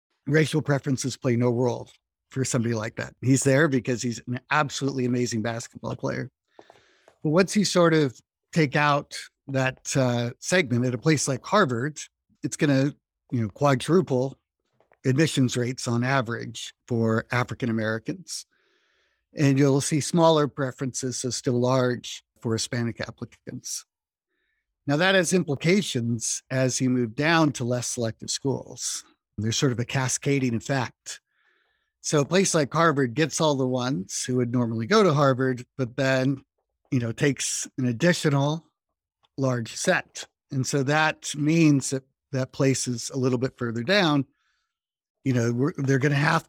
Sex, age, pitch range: male, 50-69, 125-150 Hz